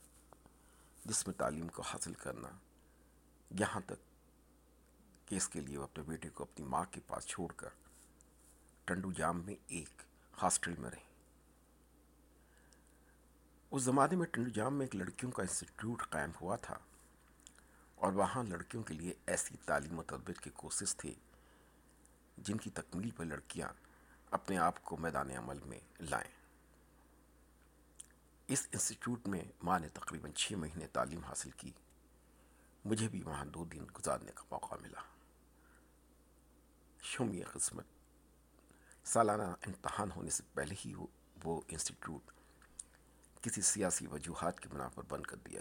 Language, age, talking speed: Urdu, 60-79, 135 wpm